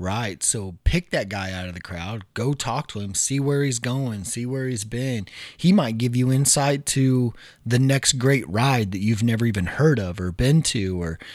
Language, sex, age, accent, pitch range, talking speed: English, male, 30-49, American, 95-125 Hz, 215 wpm